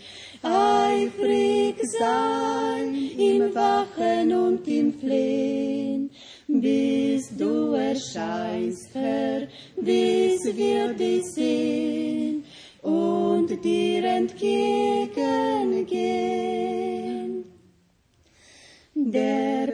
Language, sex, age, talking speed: Russian, female, 30-49, 60 wpm